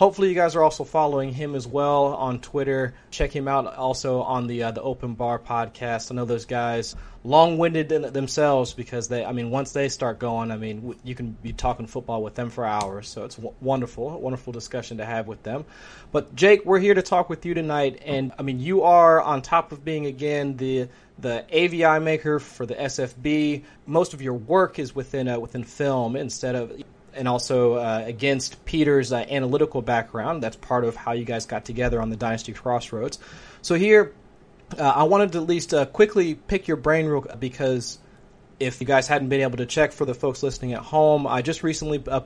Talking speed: 210 wpm